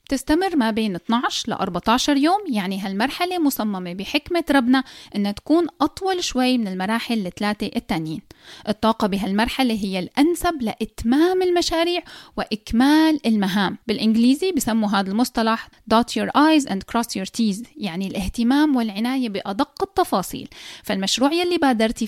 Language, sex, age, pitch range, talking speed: Arabic, female, 10-29, 205-290 Hz, 130 wpm